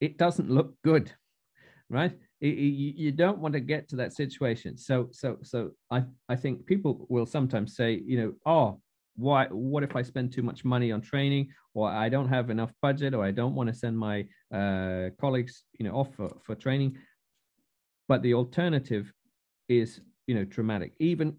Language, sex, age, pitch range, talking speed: English, male, 40-59, 115-140 Hz, 180 wpm